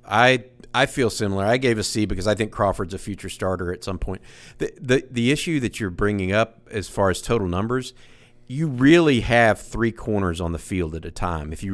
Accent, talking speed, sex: American, 225 wpm, male